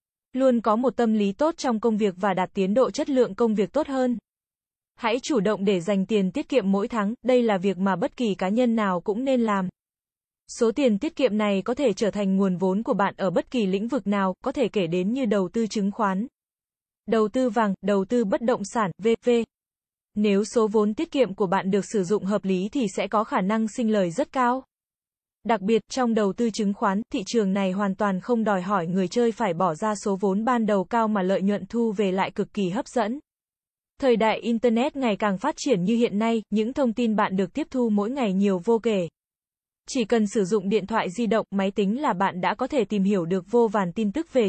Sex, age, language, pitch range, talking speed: female, 20-39, Vietnamese, 200-240 Hz, 245 wpm